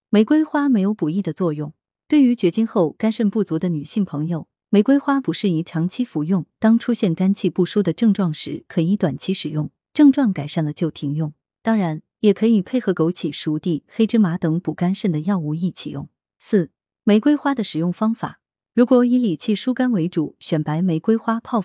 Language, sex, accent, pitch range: Chinese, female, native, 165-225 Hz